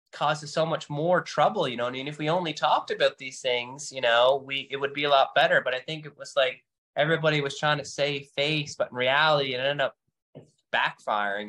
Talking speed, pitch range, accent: 230 wpm, 120-150 Hz, American